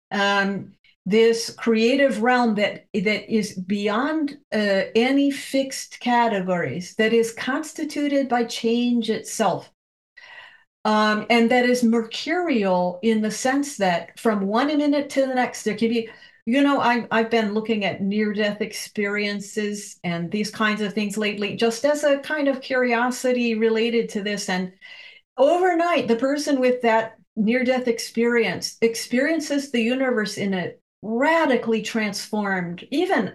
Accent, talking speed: American, 135 wpm